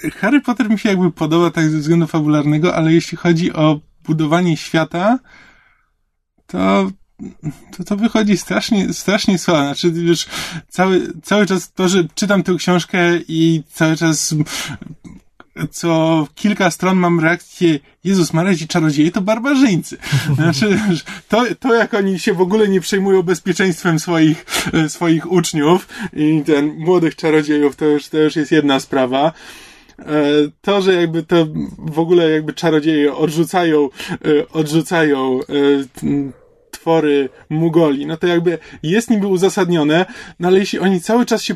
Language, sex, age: Polish, male, 20-39